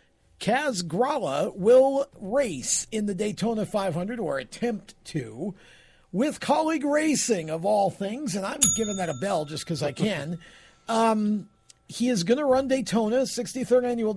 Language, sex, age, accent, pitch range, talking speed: English, male, 50-69, American, 160-220 Hz, 155 wpm